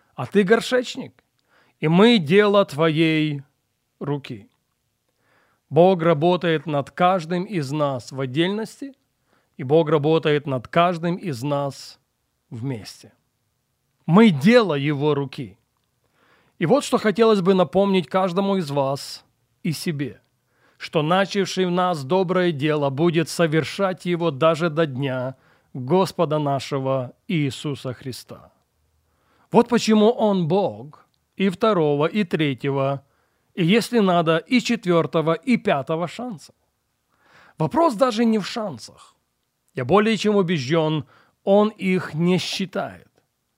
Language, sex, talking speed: Russian, male, 115 wpm